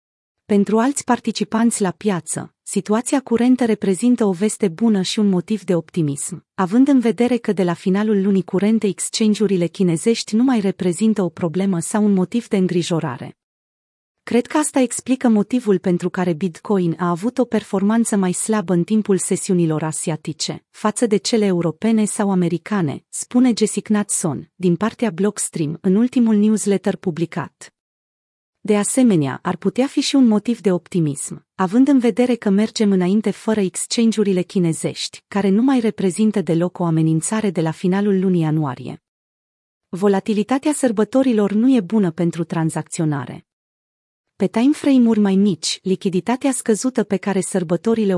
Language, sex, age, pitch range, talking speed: Romanian, female, 30-49, 180-225 Hz, 150 wpm